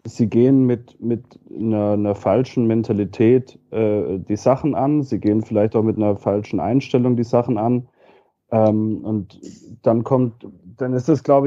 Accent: German